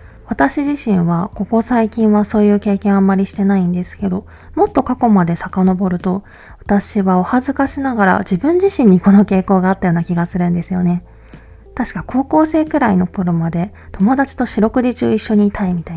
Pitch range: 180-225 Hz